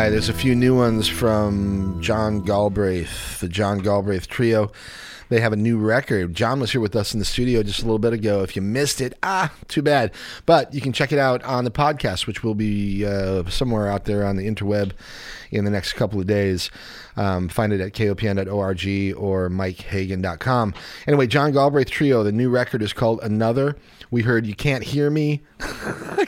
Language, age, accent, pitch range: English, 30-49, American, 100-130 Hz